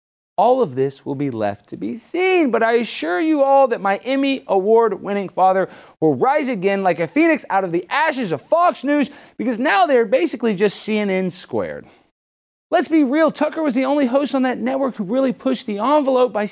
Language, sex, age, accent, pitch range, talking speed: English, male, 30-49, American, 175-280 Hz, 205 wpm